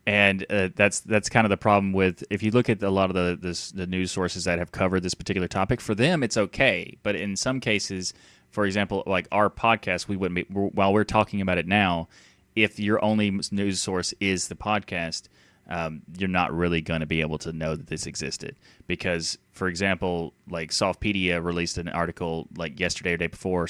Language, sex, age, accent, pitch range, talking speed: English, male, 20-39, American, 85-100 Hz, 215 wpm